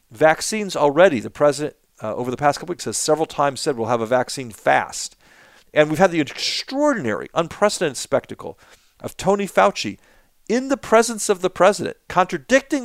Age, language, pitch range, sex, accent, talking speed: 50-69, English, 120-165 Hz, male, American, 170 wpm